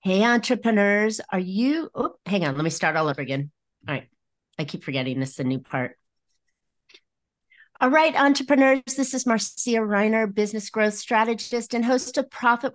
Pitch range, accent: 160-220 Hz, American